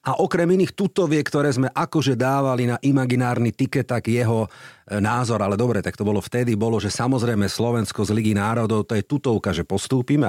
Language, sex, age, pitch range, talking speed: Slovak, male, 40-59, 105-155 Hz, 185 wpm